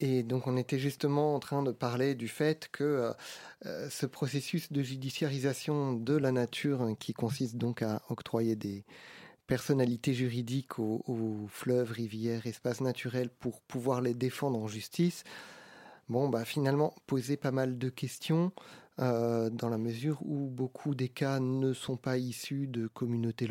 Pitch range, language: 115-140 Hz, French